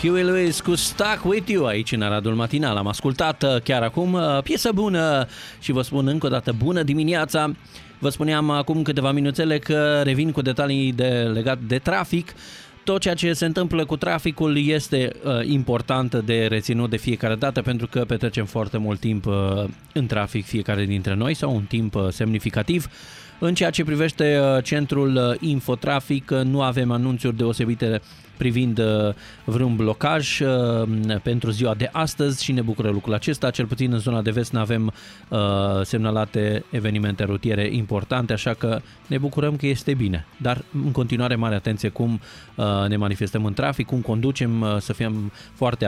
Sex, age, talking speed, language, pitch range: male, 20-39, 165 wpm, Romanian, 110-145 Hz